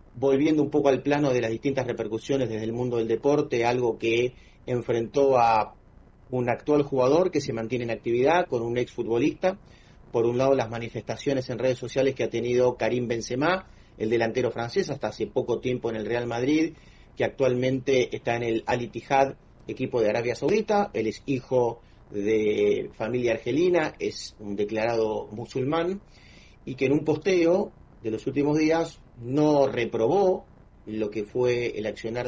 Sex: male